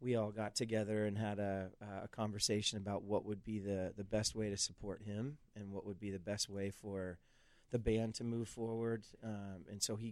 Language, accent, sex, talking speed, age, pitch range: English, American, male, 225 wpm, 30-49, 105-120 Hz